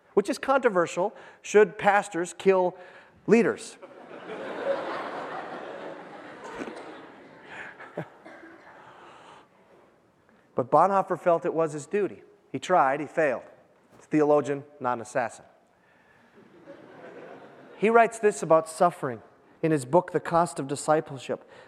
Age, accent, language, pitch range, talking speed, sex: 30-49, American, English, 170-240 Hz, 95 wpm, male